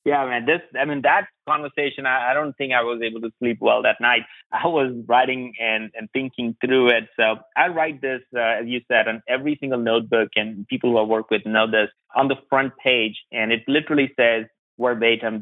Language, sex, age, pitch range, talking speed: English, male, 30-49, 110-130 Hz, 220 wpm